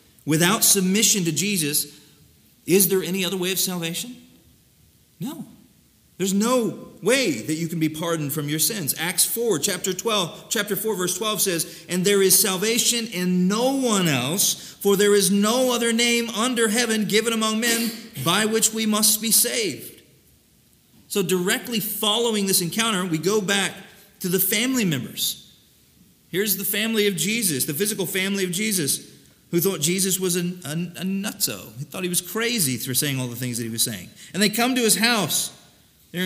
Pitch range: 145-210 Hz